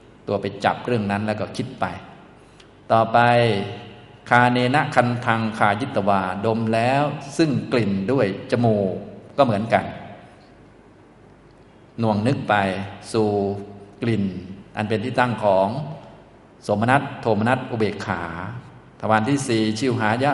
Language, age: Thai, 20-39